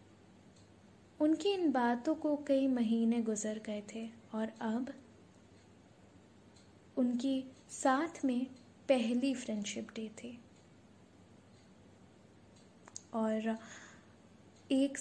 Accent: native